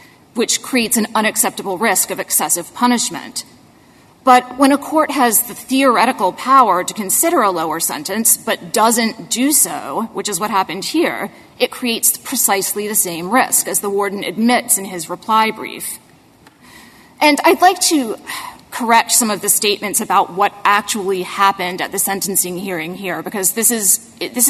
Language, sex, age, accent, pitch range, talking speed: English, female, 30-49, American, 195-255 Hz, 160 wpm